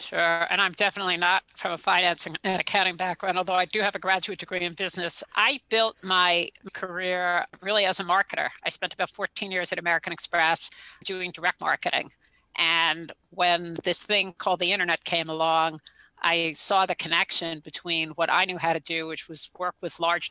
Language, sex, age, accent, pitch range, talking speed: English, female, 50-69, American, 170-190 Hz, 190 wpm